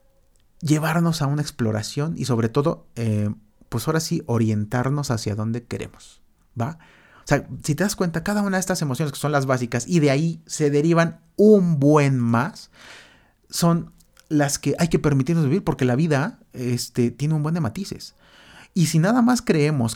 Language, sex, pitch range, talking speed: Spanish, male, 125-165 Hz, 180 wpm